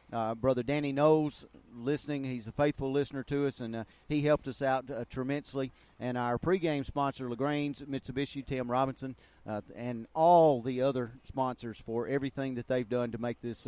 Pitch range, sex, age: 130-160 Hz, male, 40-59